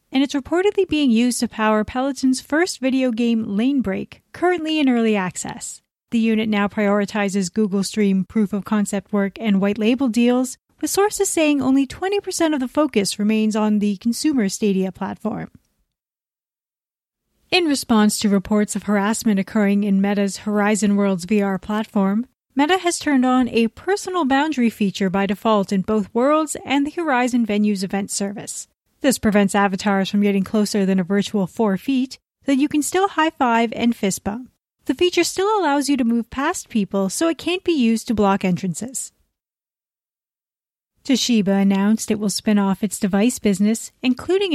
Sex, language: female, English